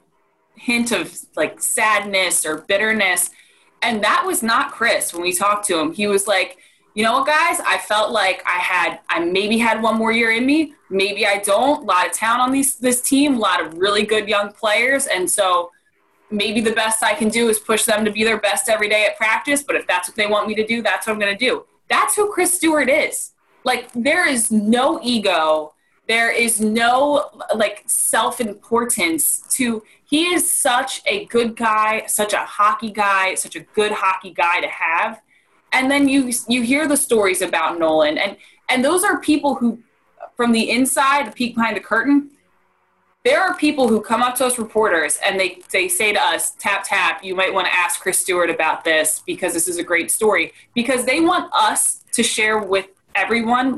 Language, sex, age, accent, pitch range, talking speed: English, female, 20-39, American, 200-265 Hz, 205 wpm